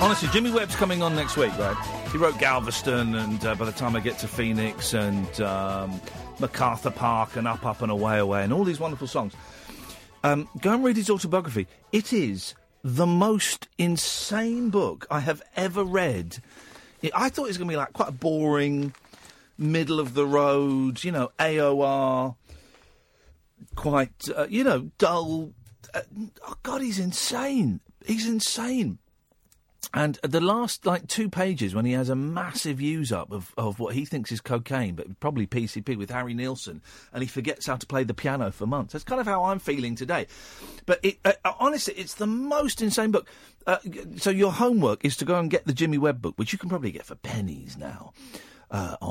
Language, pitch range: English, 115-185 Hz